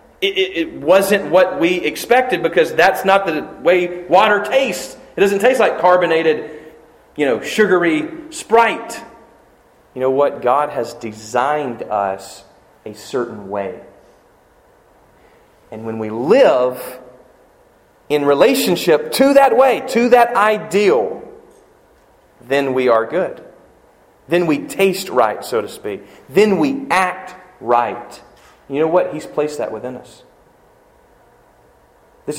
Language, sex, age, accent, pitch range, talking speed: English, male, 40-59, American, 135-225 Hz, 130 wpm